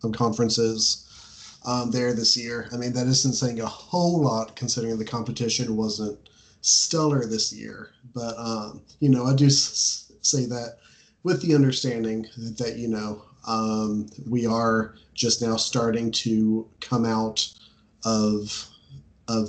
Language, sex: English, male